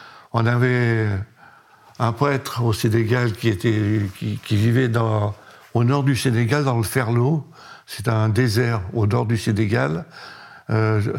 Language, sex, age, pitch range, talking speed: French, male, 60-79, 110-125 Hz, 145 wpm